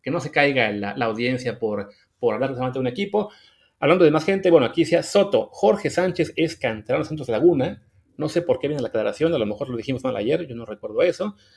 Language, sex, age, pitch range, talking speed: English, male, 30-49, 135-195 Hz, 235 wpm